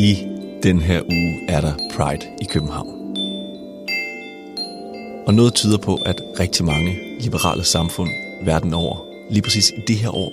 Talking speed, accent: 150 wpm, native